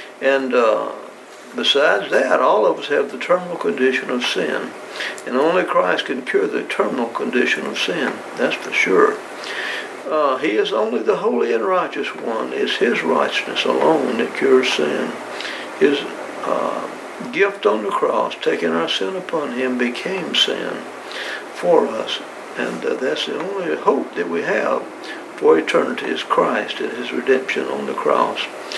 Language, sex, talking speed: English, male, 160 wpm